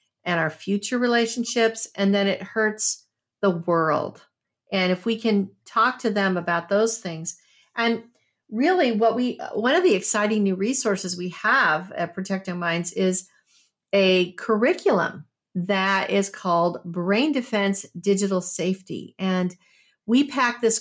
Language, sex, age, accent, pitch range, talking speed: English, female, 50-69, American, 185-230 Hz, 140 wpm